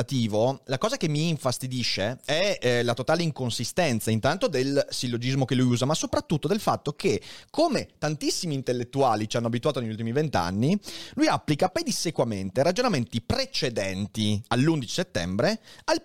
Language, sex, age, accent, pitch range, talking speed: Italian, male, 30-49, native, 115-150 Hz, 140 wpm